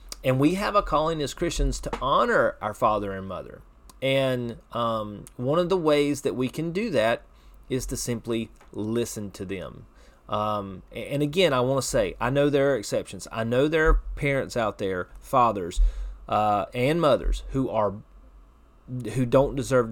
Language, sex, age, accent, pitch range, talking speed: English, male, 30-49, American, 105-145 Hz, 170 wpm